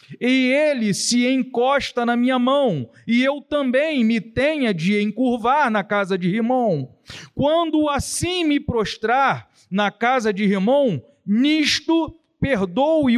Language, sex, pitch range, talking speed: Portuguese, male, 200-275 Hz, 125 wpm